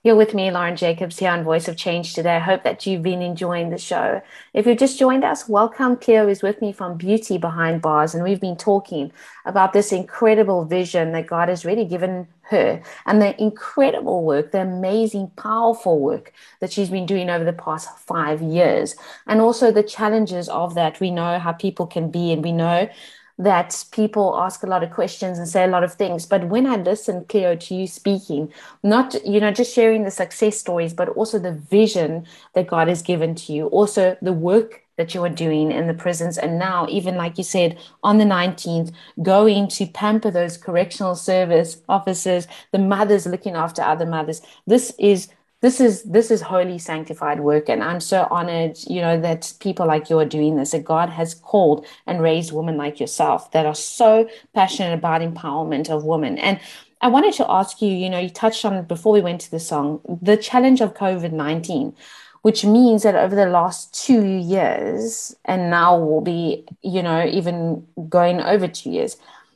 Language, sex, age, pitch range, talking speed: English, female, 20-39, 170-210 Hz, 200 wpm